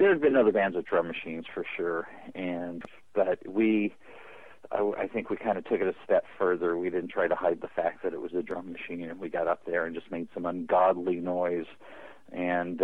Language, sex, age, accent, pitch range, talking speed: English, male, 50-69, American, 90-110 Hz, 230 wpm